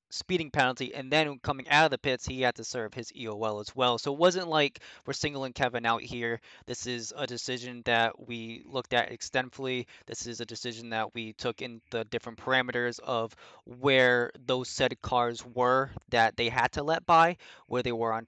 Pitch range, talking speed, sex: 115-130 Hz, 205 wpm, male